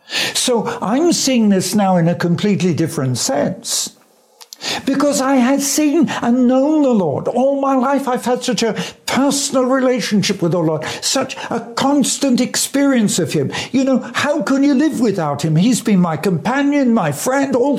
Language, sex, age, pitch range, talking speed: English, male, 60-79, 190-260 Hz, 170 wpm